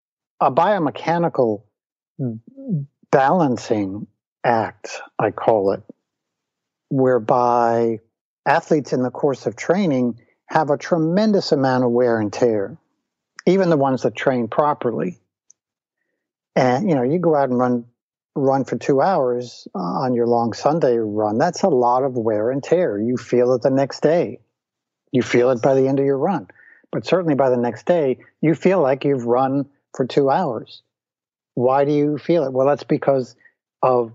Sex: male